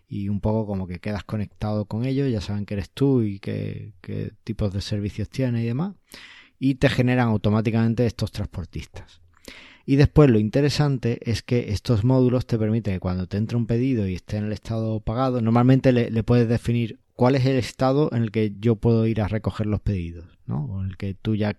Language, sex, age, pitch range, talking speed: Spanish, male, 20-39, 100-125 Hz, 205 wpm